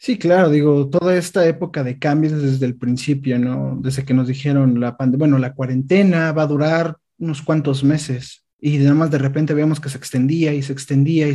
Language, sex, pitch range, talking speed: Spanish, male, 135-160 Hz, 210 wpm